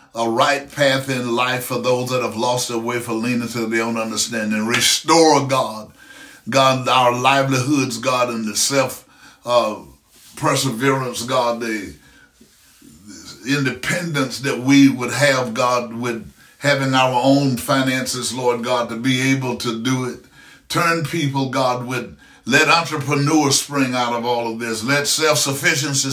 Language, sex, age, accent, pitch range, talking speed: English, male, 60-79, American, 120-140 Hz, 145 wpm